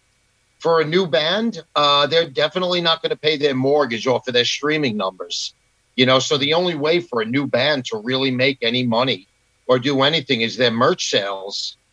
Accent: American